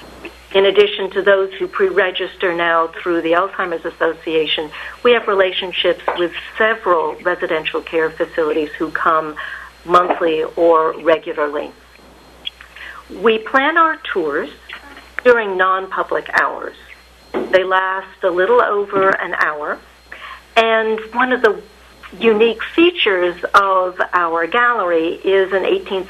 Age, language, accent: 60-79, English, American